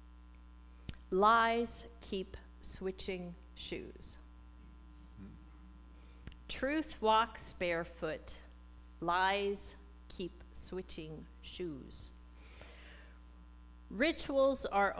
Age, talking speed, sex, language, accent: 40-59, 50 wpm, female, English, American